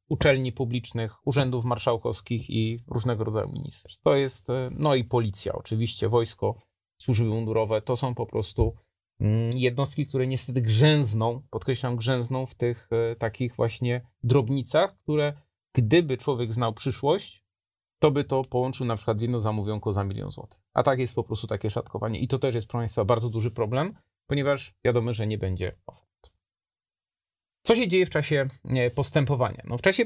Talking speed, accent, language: 160 wpm, native, Polish